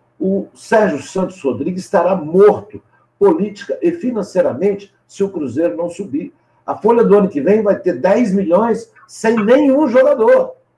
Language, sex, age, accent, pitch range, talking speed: Portuguese, male, 60-79, Brazilian, 170-230 Hz, 150 wpm